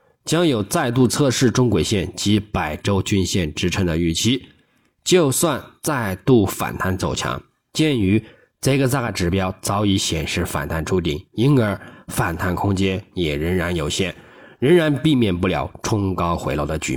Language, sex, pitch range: Chinese, male, 90-135 Hz